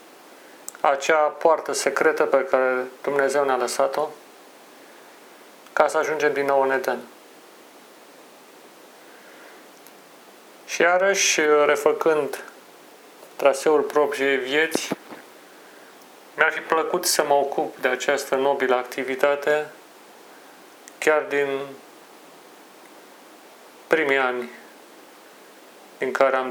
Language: Romanian